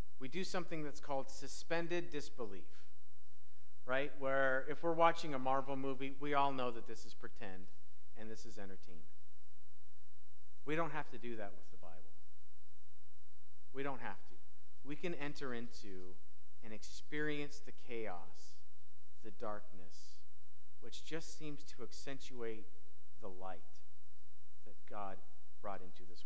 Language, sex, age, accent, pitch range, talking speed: English, male, 40-59, American, 90-120 Hz, 140 wpm